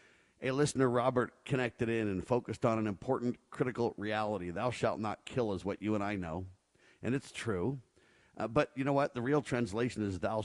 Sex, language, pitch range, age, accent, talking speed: male, English, 95-120 Hz, 50-69, American, 200 wpm